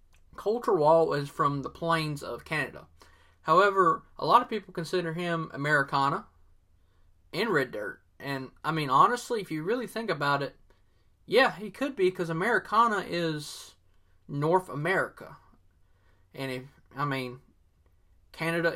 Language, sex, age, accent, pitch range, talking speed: English, male, 20-39, American, 135-175 Hz, 140 wpm